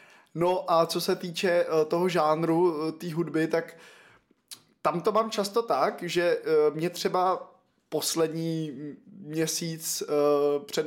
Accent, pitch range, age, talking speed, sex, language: native, 155-180 Hz, 20-39, 115 wpm, male, Czech